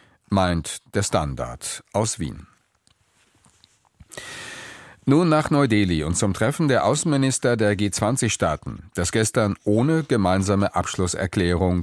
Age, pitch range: 40-59, 90-120 Hz